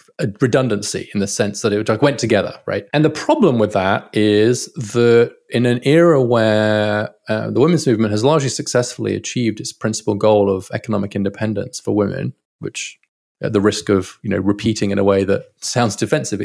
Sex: male